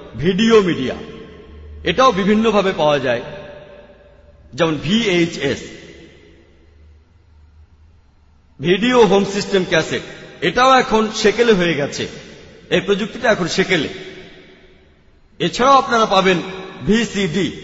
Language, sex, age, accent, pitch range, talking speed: Bengali, male, 50-69, native, 150-215 Hz, 35 wpm